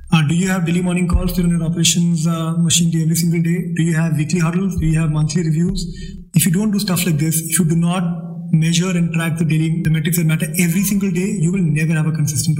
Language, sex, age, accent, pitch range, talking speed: English, male, 20-39, Indian, 165-190 Hz, 260 wpm